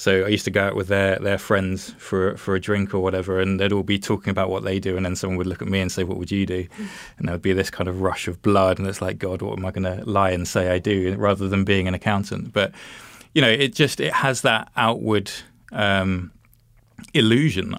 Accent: British